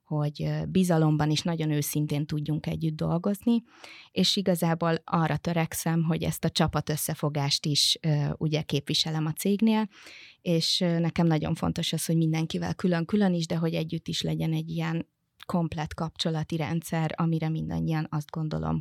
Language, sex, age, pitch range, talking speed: Hungarian, female, 20-39, 155-170 Hz, 145 wpm